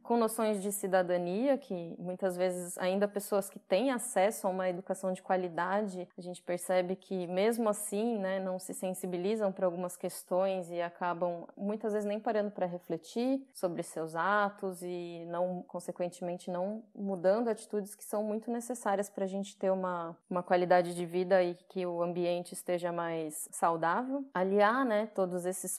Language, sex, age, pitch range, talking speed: Portuguese, female, 20-39, 180-225 Hz, 165 wpm